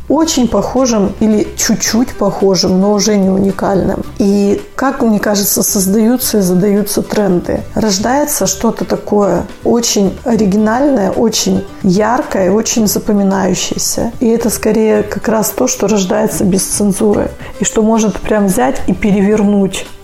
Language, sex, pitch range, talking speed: Russian, female, 195-225 Hz, 130 wpm